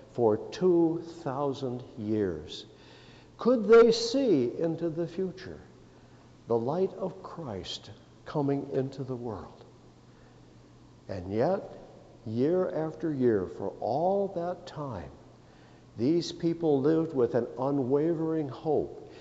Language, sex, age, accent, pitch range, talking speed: English, male, 60-79, American, 115-170 Hz, 105 wpm